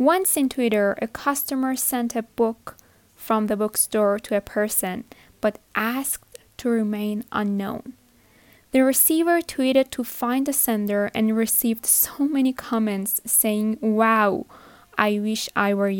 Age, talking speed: 10-29, 140 wpm